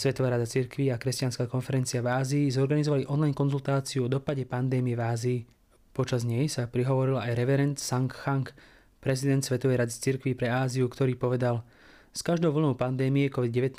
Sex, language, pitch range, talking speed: male, English, 125-140 Hz, 160 wpm